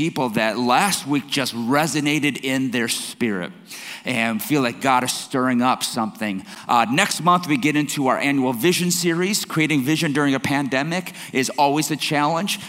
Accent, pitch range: American, 125-160 Hz